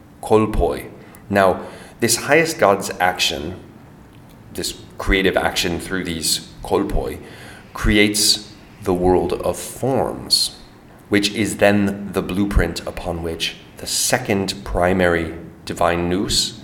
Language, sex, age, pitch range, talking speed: English, male, 30-49, 85-105 Hz, 100 wpm